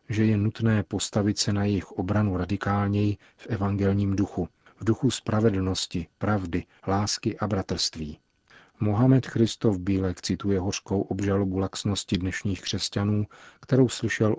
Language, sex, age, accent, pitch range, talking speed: Czech, male, 40-59, native, 95-110 Hz, 125 wpm